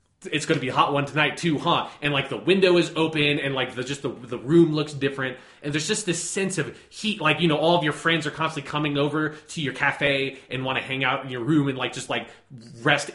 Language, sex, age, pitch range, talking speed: English, male, 20-39, 120-145 Hz, 270 wpm